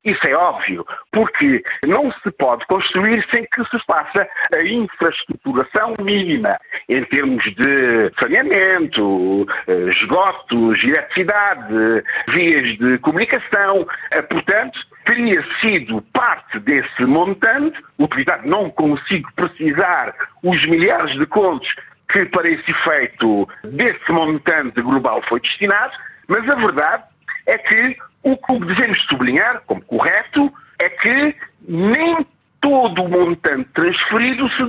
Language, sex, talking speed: Portuguese, male, 110 wpm